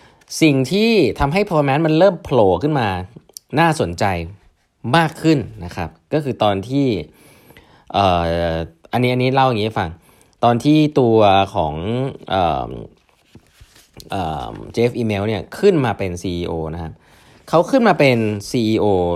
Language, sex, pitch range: Thai, male, 90-130 Hz